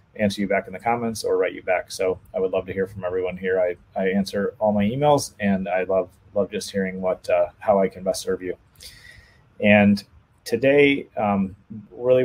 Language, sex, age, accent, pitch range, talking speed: English, male, 30-49, American, 95-105 Hz, 210 wpm